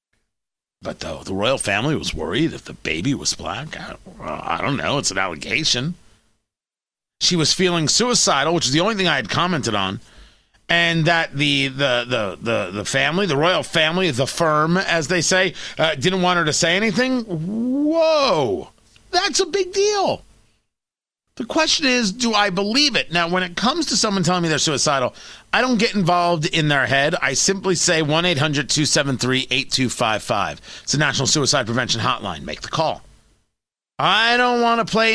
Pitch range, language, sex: 150-225 Hz, English, male